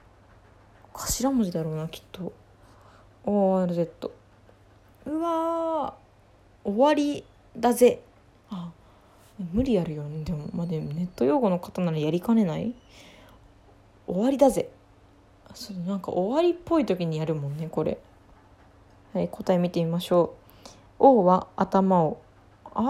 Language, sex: Japanese, female